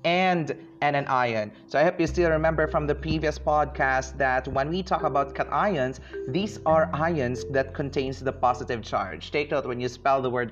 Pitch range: 125-160 Hz